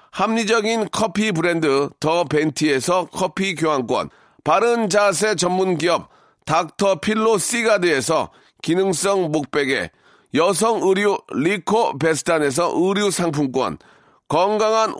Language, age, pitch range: Korean, 40-59, 170-215 Hz